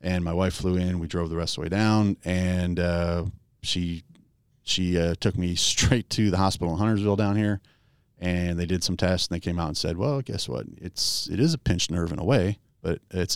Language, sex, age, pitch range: English, male, 30-49, 85-105 Hz